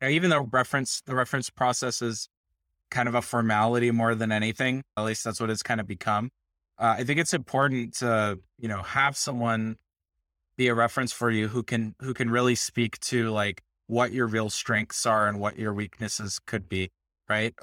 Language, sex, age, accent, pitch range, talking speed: English, male, 20-39, American, 105-125 Hz, 195 wpm